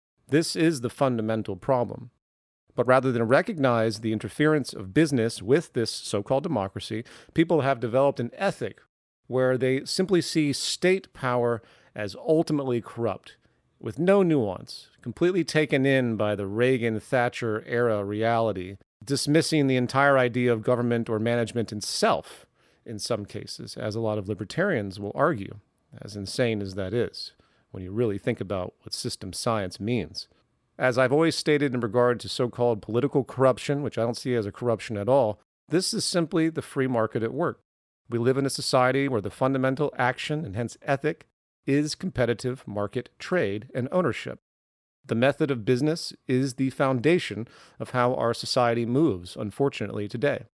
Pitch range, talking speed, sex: 110-140 Hz, 160 wpm, male